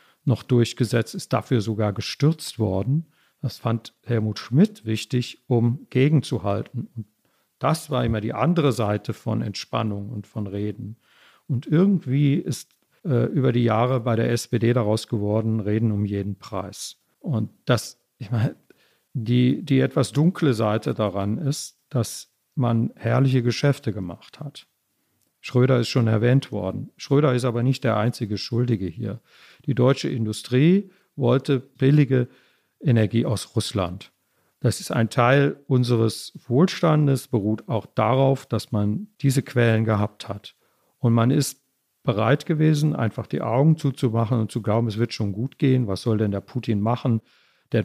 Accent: German